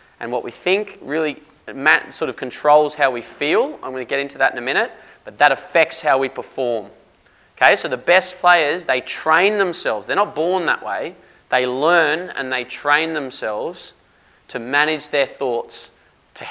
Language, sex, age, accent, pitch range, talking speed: English, male, 20-39, Australian, 130-160 Hz, 180 wpm